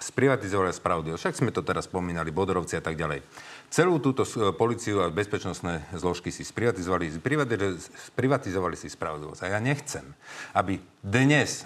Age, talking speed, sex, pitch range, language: 40-59, 140 wpm, male, 90-125 Hz, Slovak